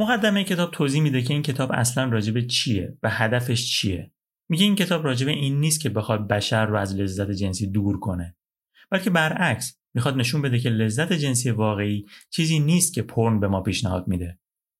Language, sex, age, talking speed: Persian, male, 30-49, 185 wpm